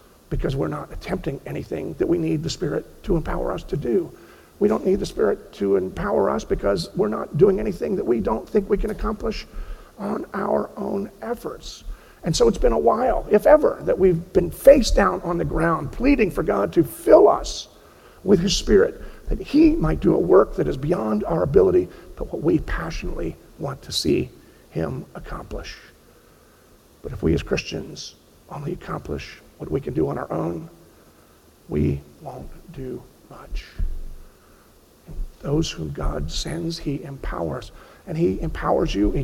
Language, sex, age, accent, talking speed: English, male, 50-69, American, 175 wpm